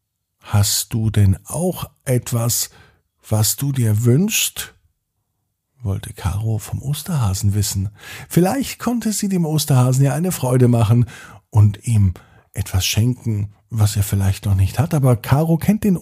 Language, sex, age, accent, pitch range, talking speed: German, male, 50-69, German, 105-150 Hz, 140 wpm